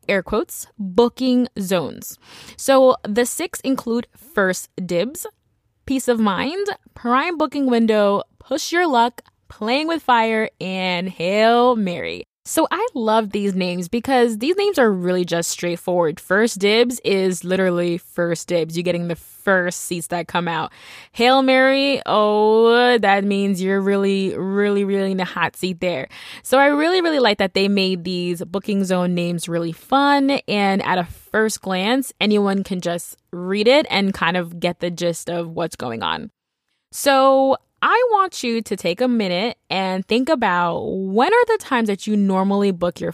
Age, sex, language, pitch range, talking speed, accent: 20-39, female, English, 185-260 Hz, 165 wpm, American